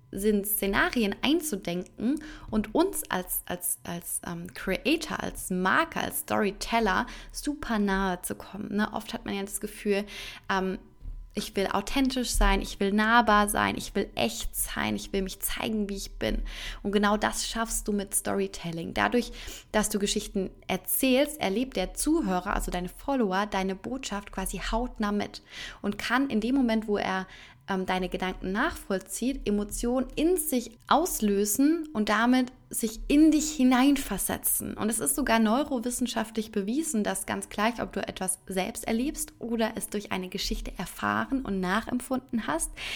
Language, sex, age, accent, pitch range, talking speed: German, female, 20-39, German, 200-255 Hz, 150 wpm